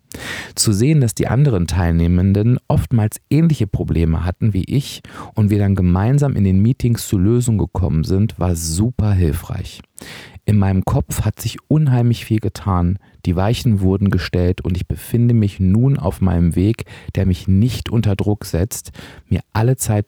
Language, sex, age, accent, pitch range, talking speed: German, male, 40-59, German, 85-115 Hz, 165 wpm